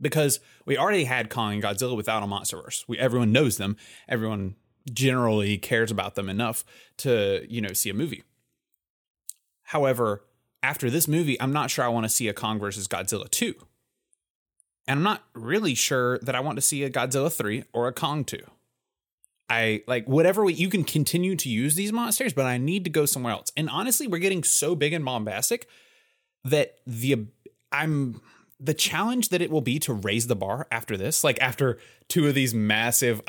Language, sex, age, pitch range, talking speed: English, male, 20-39, 110-150 Hz, 190 wpm